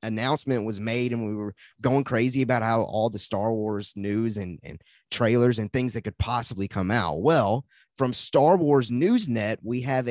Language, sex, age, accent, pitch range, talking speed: English, male, 30-49, American, 105-135 Hz, 190 wpm